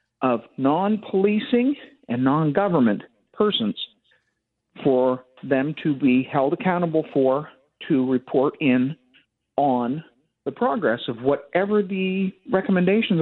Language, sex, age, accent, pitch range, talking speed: English, male, 50-69, American, 140-180 Hz, 100 wpm